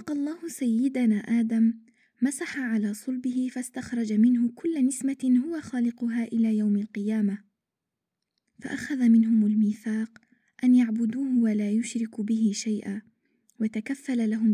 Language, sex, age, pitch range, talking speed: Arabic, female, 20-39, 220-250 Hz, 110 wpm